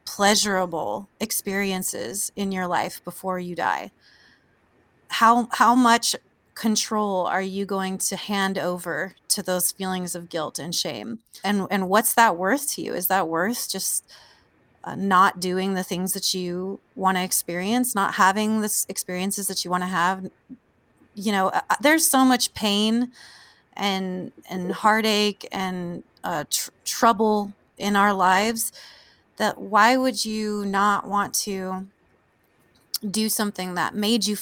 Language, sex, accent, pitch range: English, female, American, 185-225 Hz